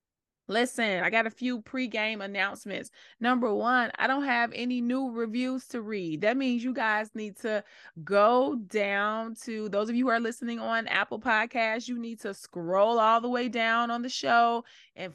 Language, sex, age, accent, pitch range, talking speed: English, female, 20-39, American, 195-240 Hz, 185 wpm